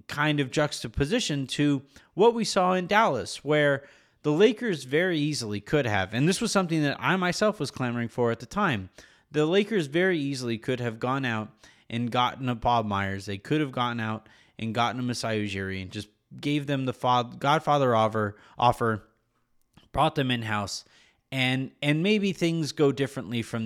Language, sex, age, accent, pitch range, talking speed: English, male, 30-49, American, 115-150 Hz, 175 wpm